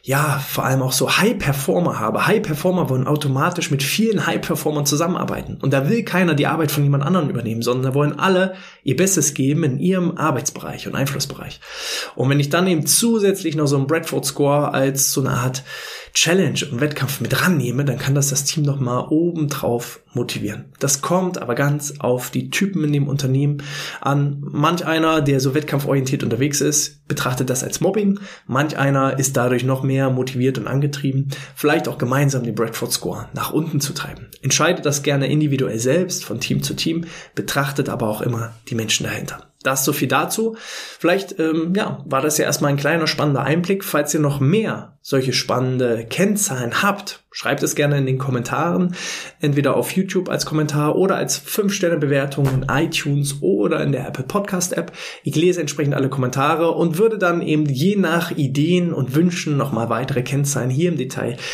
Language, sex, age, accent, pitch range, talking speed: German, male, 20-39, German, 135-165 Hz, 185 wpm